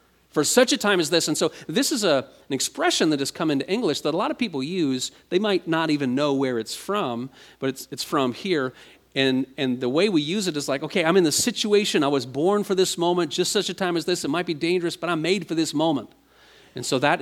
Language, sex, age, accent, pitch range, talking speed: English, male, 40-59, American, 130-180 Hz, 265 wpm